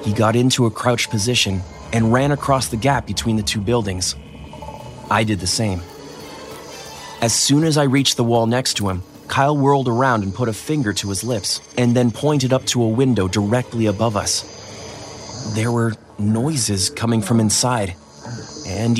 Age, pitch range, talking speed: 30-49, 100-125 Hz, 175 wpm